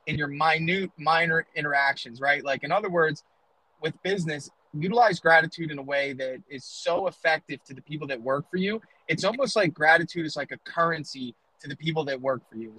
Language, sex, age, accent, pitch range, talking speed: English, male, 20-39, American, 140-170 Hz, 200 wpm